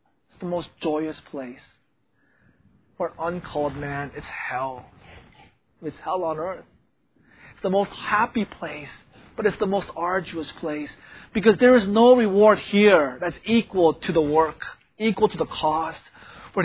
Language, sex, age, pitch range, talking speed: English, male, 30-49, 170-225 Hz, 150 wpm